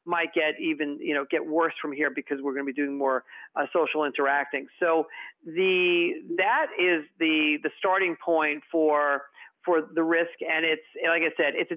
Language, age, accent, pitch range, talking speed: English, 40-59, American, 150-195 Hz, 195 wpm